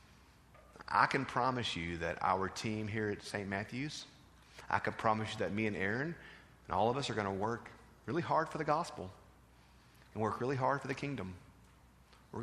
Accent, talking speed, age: American, 195 wpm, 40-59